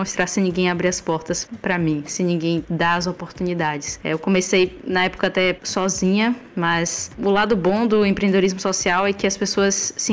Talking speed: 185 wpm